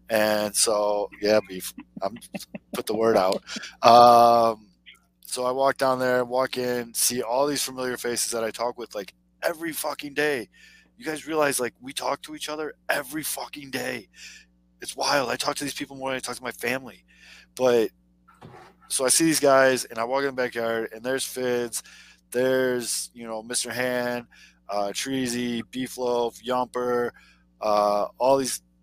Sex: male